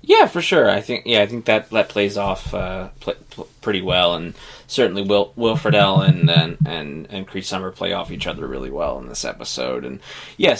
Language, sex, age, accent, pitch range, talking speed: English, male, 20-39, American, 90-110 Hz, 210 wpm